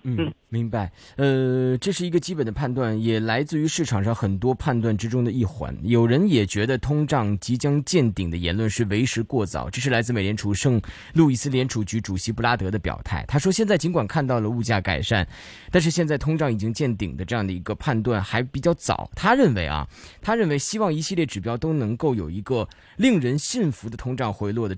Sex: male